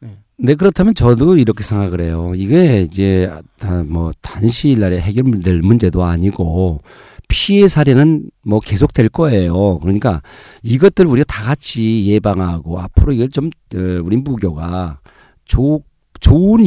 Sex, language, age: male, Korean, 50-69